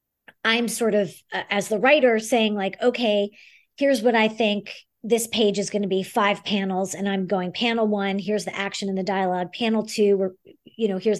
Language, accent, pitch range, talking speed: English, American, 200-235 Hz, 205 wpm